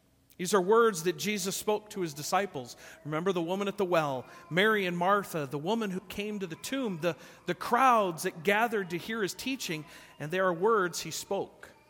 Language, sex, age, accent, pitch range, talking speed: English, male, 40-59, American, 155-210 Hz, 200 wpm